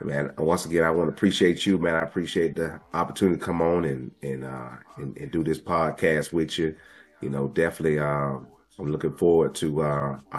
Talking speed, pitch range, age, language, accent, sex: 210 wpm, 70-85 Hz, 30-49, English, American, male